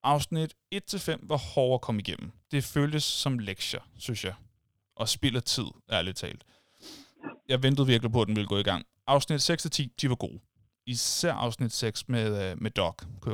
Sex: male